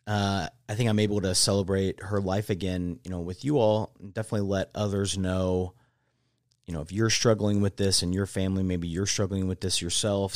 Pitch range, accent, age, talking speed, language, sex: 90-110 Hz, American, 30-49, 210 wpm, English, male